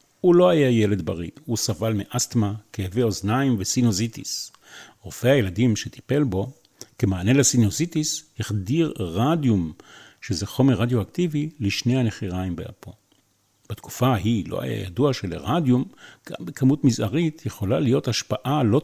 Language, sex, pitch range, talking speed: Hebrew, male, 105-140 Hz, 120 wpm